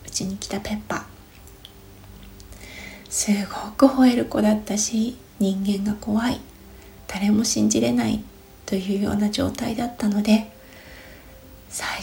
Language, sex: Japanese, female